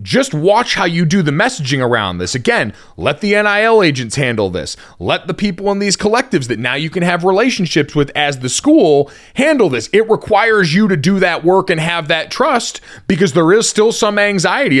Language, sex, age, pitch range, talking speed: English, male, 30-49, 145-205 Hz, 205 wpm